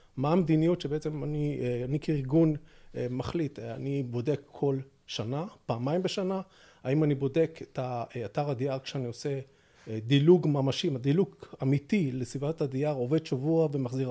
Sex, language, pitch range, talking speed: male, Hebrew, 130-175 Hz, 130 wpm